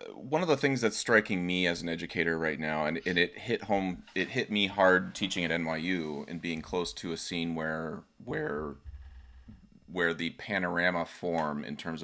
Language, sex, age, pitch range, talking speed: English, male, 30-49, 80-105 Hz, 190 wpm